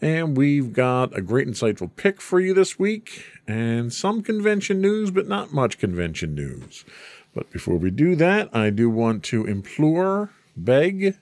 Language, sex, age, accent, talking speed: English, male, 50-69, American, 165 wpm